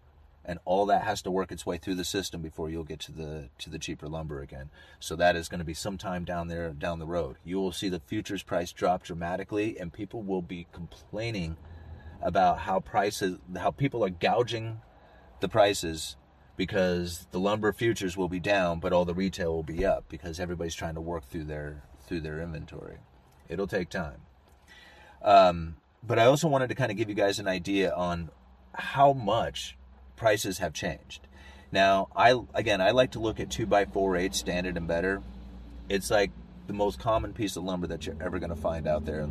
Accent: American